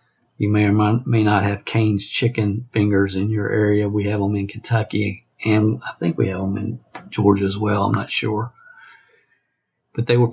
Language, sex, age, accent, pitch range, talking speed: English, male, 50-69, American, 105-120 Hz, 190 wpm